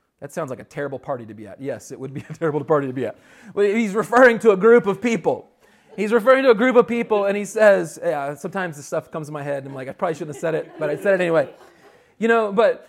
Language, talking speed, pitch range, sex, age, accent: English, 285 wpm, 170-230 Hz, male, 30-49, American